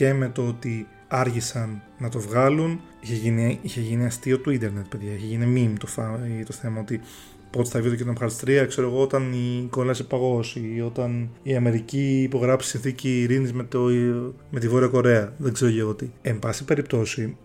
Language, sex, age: Greek, male, 20-39